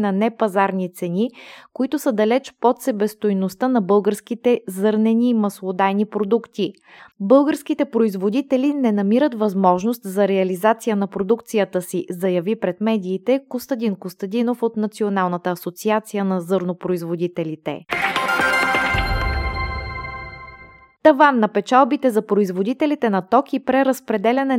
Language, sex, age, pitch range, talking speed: Bulgarian, female, 20-39, 195-240 Hz, 105 wpm